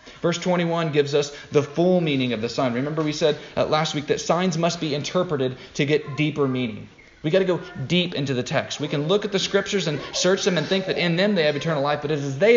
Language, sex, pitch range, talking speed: English, male, 145-190 Hz, 265 wpm